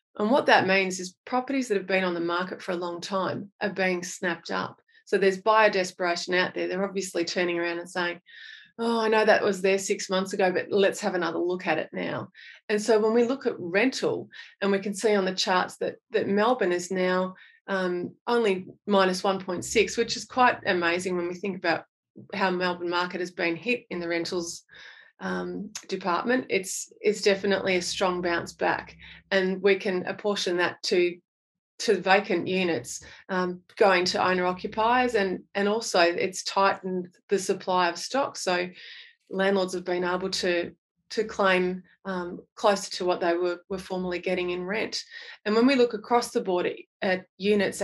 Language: English